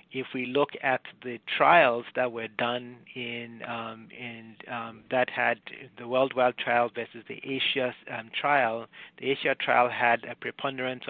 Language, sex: English, male